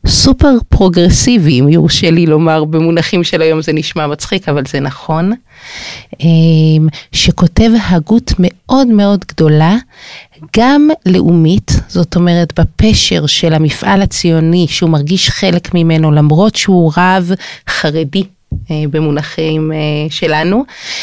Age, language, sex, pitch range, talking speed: 30-49, Hebrew, female, 155-190 Hz, 105 wpm